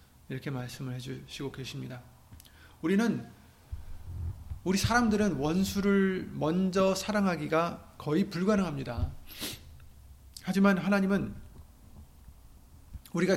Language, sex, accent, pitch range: Korean, male, native, 120-185 Hz